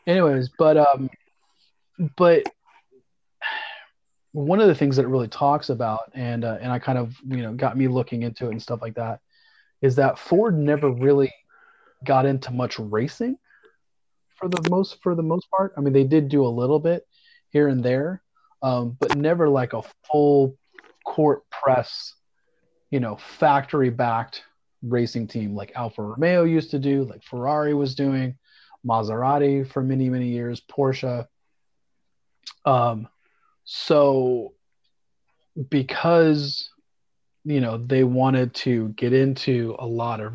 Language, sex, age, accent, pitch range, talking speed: English, male, 30-49, American, 120-150 Hz, 145 wpm